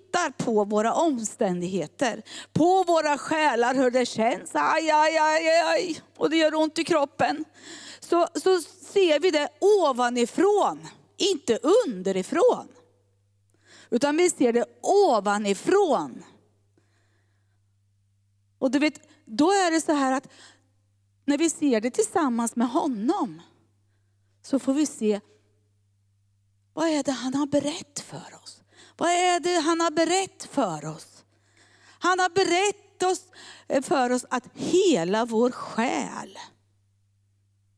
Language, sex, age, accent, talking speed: Swedish, female, 30-49, native, 125 wpm